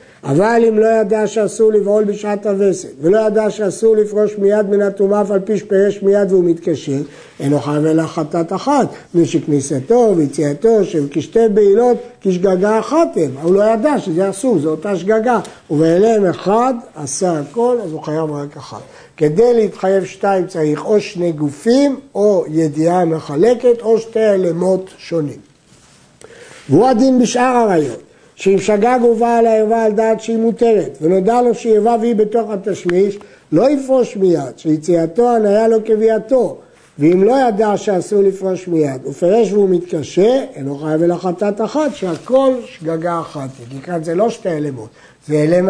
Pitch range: 165-220 Hz